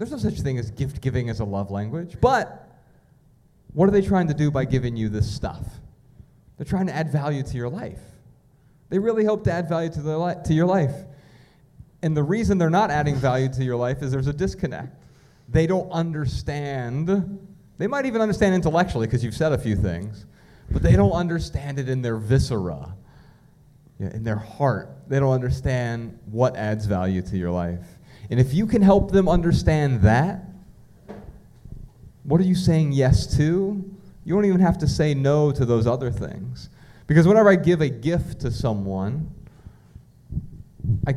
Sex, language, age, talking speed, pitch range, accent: male, English, 30-49, 180 wpm, 110-155 Hz, American